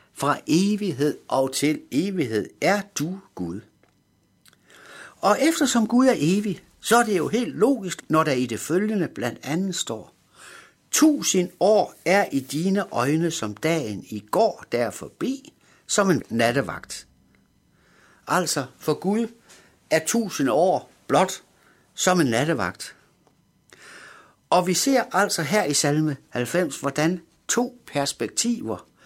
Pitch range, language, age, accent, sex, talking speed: 145-205 Hz, Danish, 60-79, native, male, 130 wpm